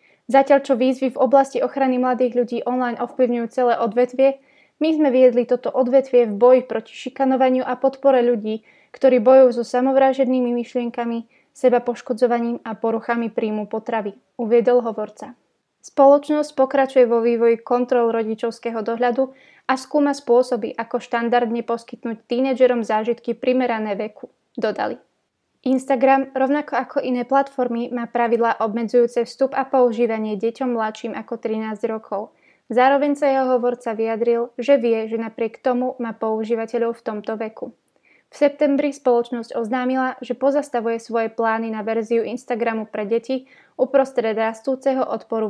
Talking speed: 135 wpm